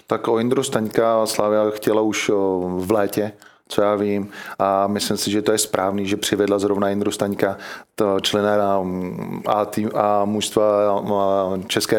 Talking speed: 145 wpm